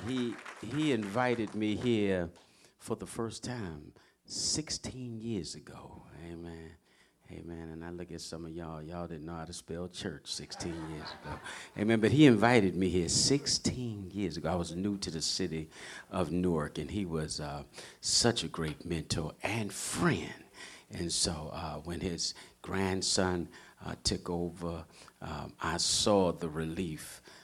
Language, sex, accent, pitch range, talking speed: English, male, American, 80-95 Hz, 155 wpm